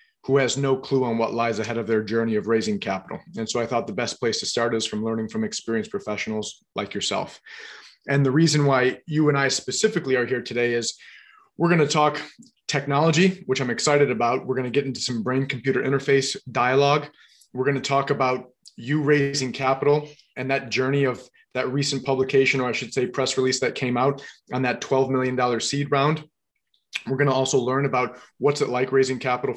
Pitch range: 125-140 Hz